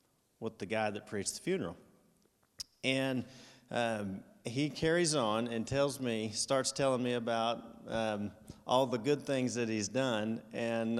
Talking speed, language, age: 155 wpm, English, 40-59